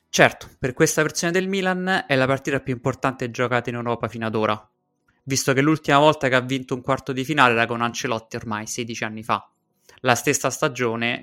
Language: Italian